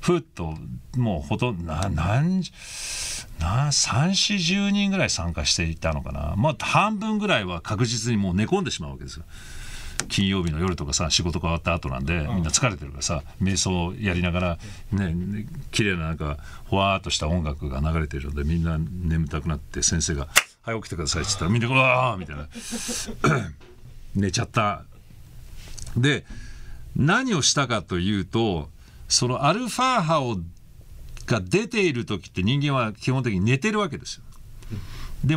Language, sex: Japanese, male